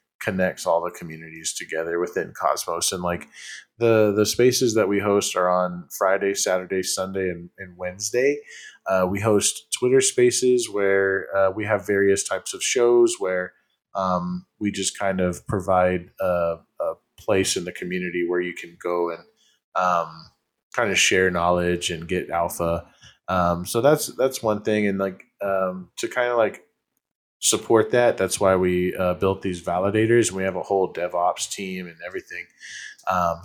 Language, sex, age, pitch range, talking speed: English, male, 20-39, 90-115 Hz, 165 wpm